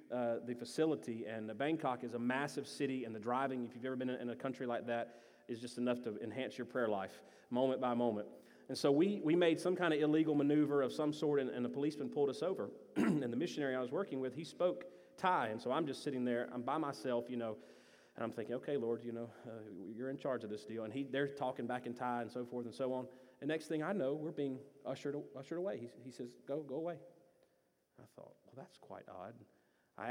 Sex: male